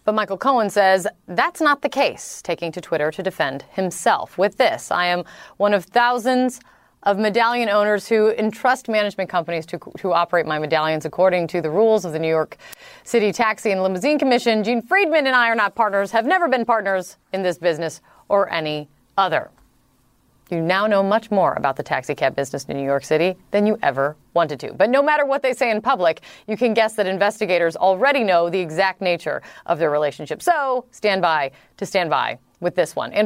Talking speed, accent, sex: 200 wpm, American, female